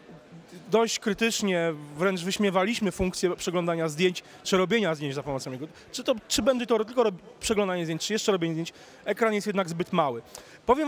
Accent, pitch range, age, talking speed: native, 155-205 Hz, 30-49, 175 wpm